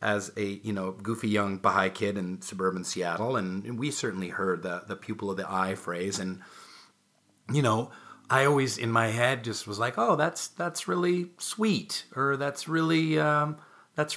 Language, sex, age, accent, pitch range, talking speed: English, male, 40-59, American, 95-130 Hz, 180 wpm